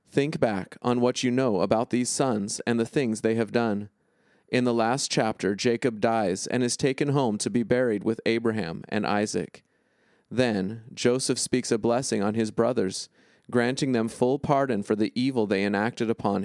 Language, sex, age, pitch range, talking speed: English, male, 30-49, 110-125 Hz, 180 wpm